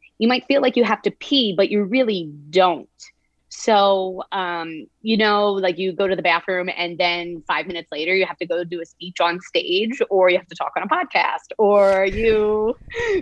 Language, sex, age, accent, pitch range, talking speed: English, female, 30-49, American, 175-210 Hz, 210 wpm